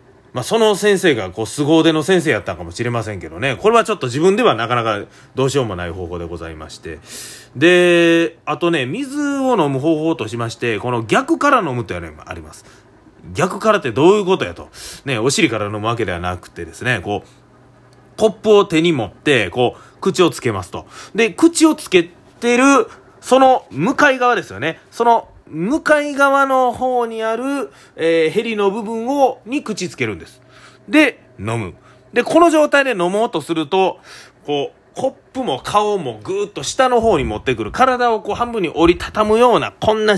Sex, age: male, 30-49